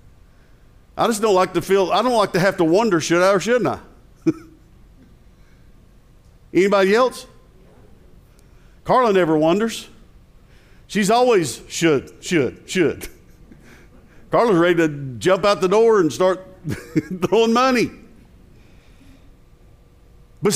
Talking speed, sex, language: 115 wpm, male, English